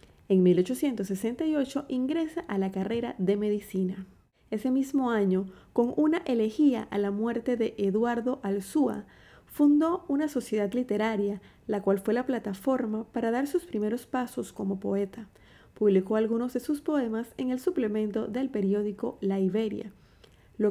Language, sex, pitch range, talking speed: Spanish, female, 200-255 Hz, 140 wpm